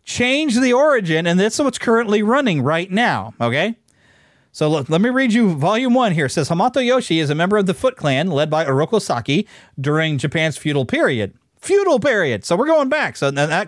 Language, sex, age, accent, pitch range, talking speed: English, male, 40-59, American, 155-225 Hz, 200 wpm